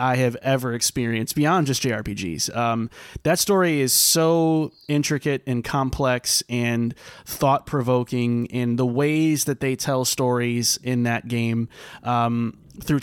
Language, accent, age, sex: English, American, 30-49, male